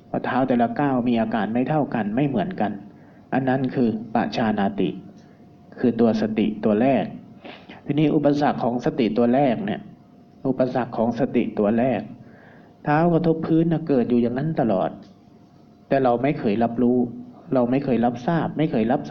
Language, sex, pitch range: Thai, male, 120-150 Hz